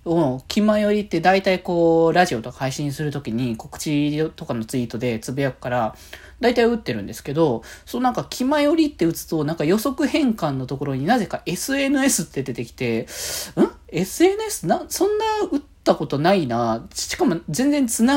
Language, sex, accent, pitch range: Japanese, male, native, 130-210 Hz